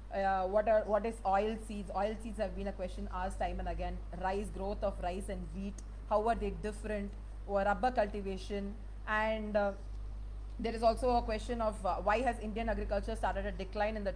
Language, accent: Tamil, native